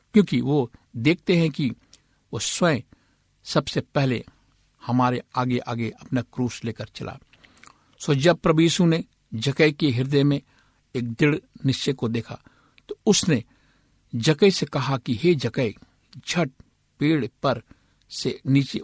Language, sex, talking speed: Hindi, male, 130 wpm